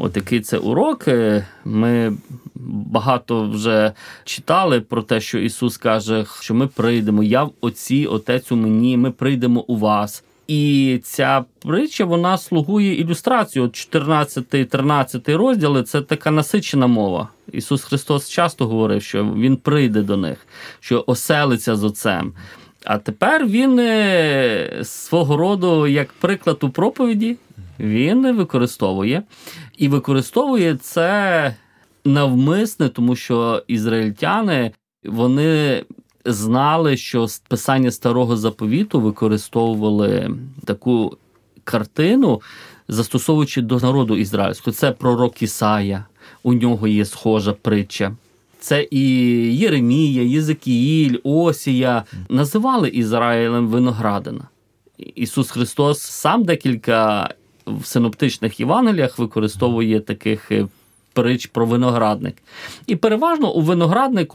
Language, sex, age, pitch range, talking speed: Ukrainian, male, 30-49, 115-150 Hz, 105 wpm